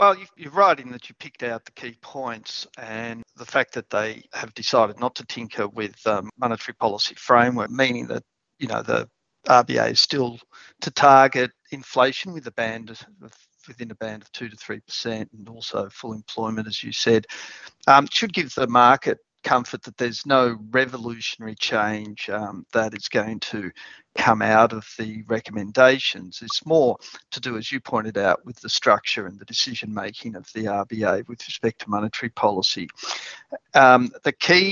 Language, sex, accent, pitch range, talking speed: English, male, Australian, 110-130 Hz, 175 wpm